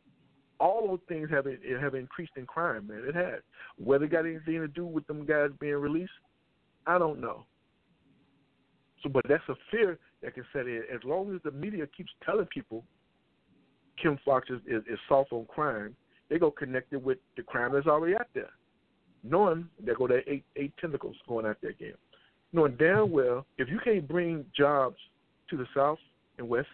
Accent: American